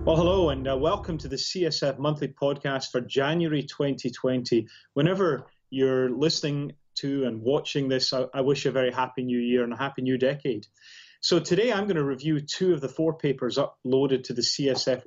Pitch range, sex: 130-155 Hz, male